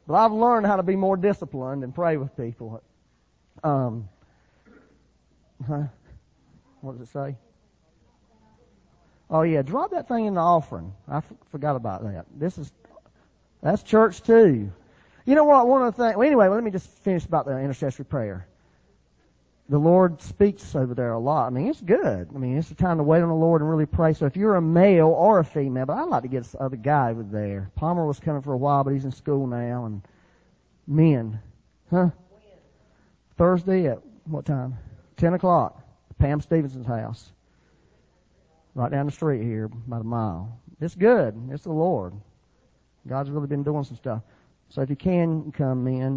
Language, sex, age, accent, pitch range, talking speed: English, male, 40-59, American, 120-170 Hz, 185 wpm